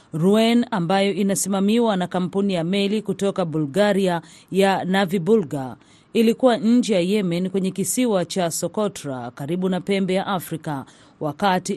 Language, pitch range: Swahili, 165-210 Hz